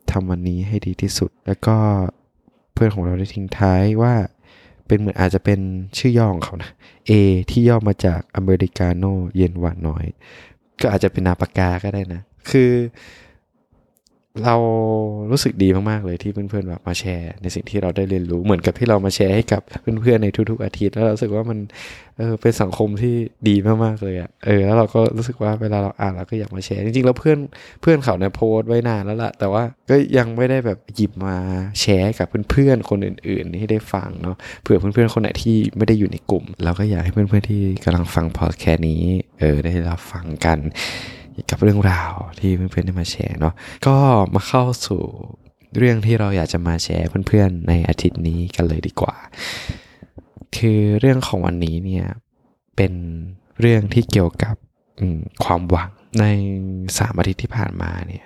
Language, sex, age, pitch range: Thai, male, 20-39, 90-110 Hz